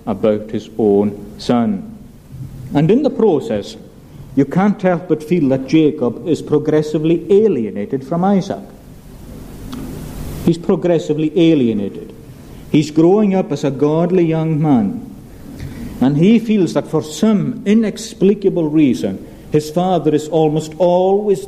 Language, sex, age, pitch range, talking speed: English, male, 50-69, 135-185 Hz, 125 wpm